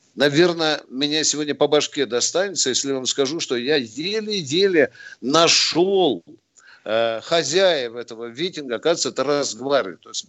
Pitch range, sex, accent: 135-185 Hz, male, native